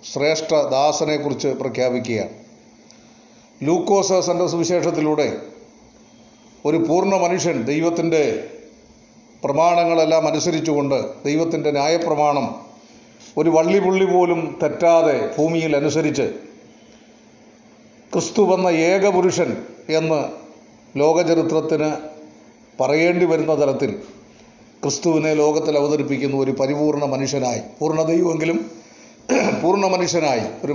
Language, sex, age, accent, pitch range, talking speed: Malayalam, male, 40-59, native, 140-170 Hz, 70 wpm